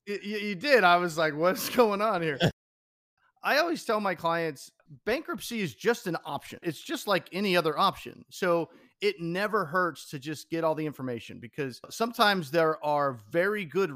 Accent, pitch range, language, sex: American, 130-180 Hz, English, male